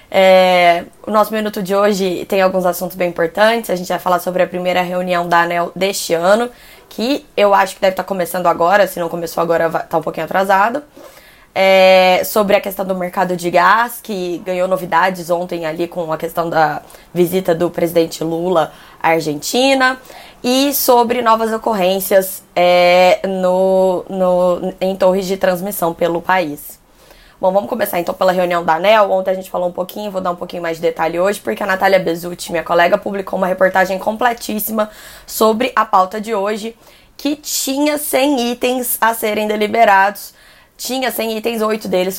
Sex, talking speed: female, 170 wpm